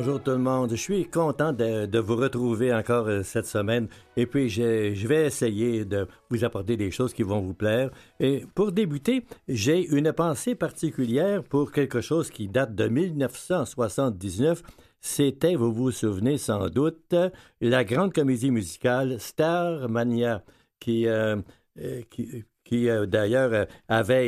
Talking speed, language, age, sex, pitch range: 150 wpm, French, 60-79, male, 115-145 Hz